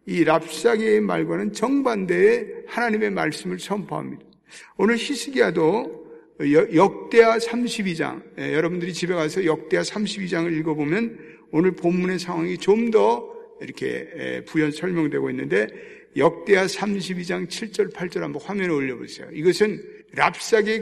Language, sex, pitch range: Korean, male, 155-215 Hz